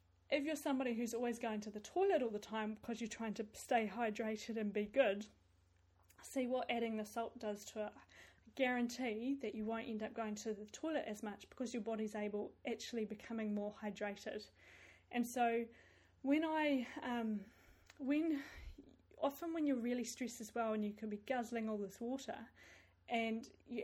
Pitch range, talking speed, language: 215-245 Hz, 185 wpm, English